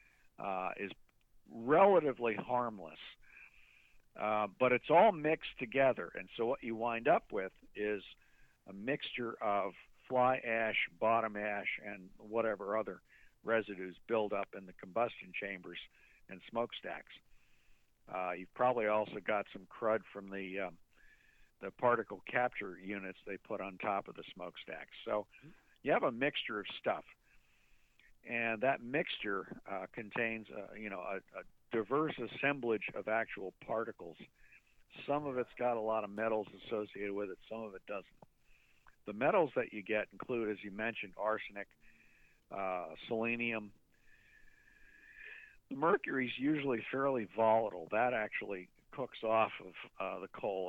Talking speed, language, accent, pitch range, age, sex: 145 wpm, English, American, 100-125 Hz, 60-79, male